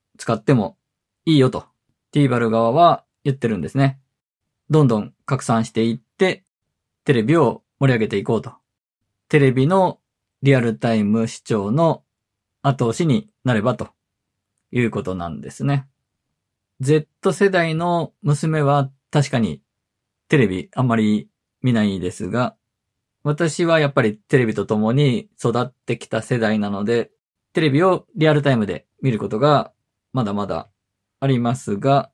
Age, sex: 20-39, male